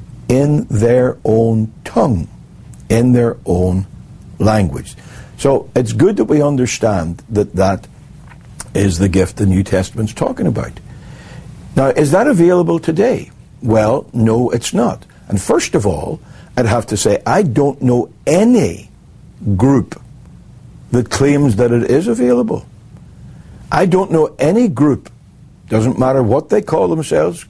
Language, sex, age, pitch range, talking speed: English, male, 60-79, 105-145 Hz, 135 wpm